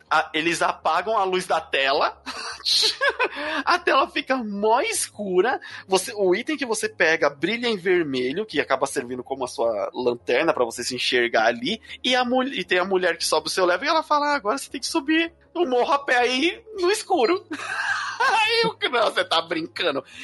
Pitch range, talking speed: 195-315 Hz, 180 wpm